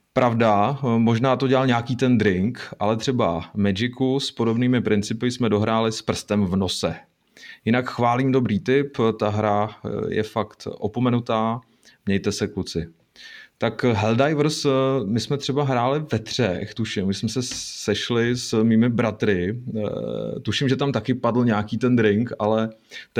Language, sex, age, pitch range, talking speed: Czech, male, 30-49, 105-125 Hz, 145 wpm